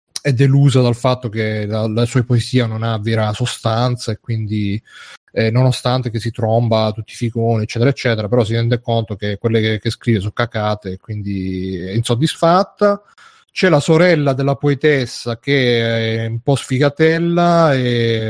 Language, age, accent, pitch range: Italian, 30-49, native, 115-135 Hz